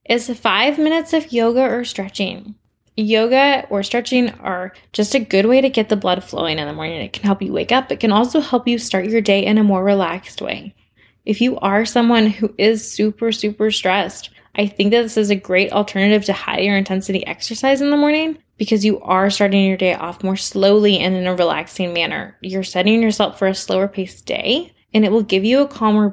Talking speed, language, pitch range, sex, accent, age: 220 wpm, English, 190-230 Hz, female, American, 20-39